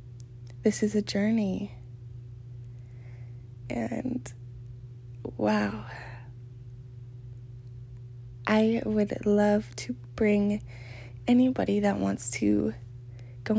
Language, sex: English, female